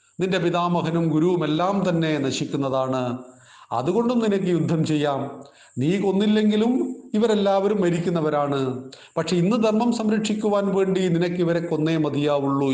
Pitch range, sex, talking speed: 140-175 Hz, male, 100 wpm